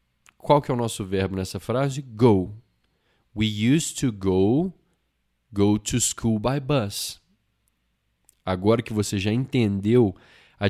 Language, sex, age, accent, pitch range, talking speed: Portuguese, male, 20-39, Brazilian, 100-135 Hz, 135 wpm